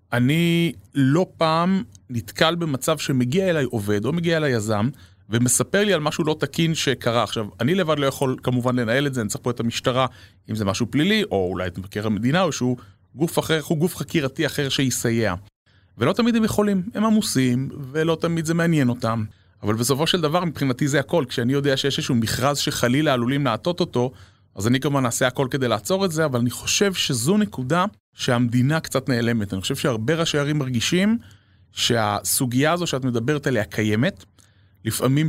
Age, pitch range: 30-49, 120-160 Hz